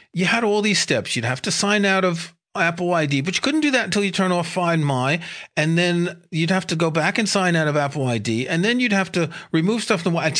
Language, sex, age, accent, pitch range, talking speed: English, male, 40-59, American, 135-180 Hz, 265 wpm